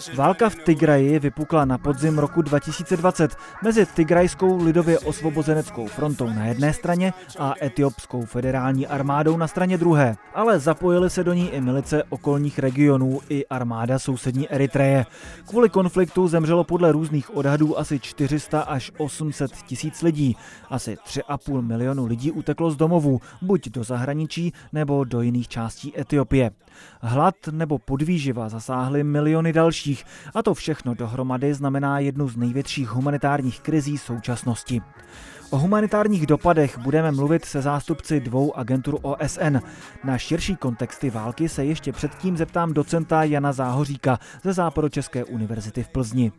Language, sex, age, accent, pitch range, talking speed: Czech, male, 20-39, native, 130-160 Hz, 135 wpm